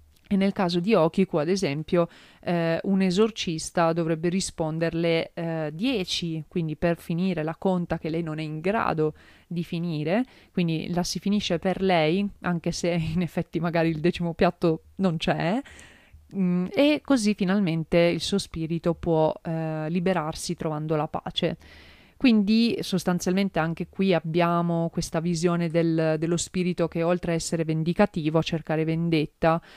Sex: female